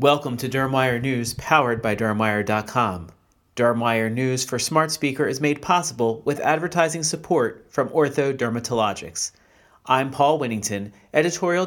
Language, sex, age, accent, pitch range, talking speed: English, male, 40-59, American, 115-165 Hz, 130 wpm